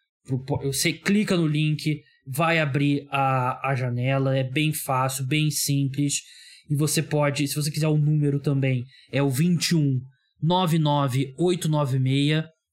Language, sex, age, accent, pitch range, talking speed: Portuguese, male, 20-39, Brazilian, 130-160 Hz, 125 wpm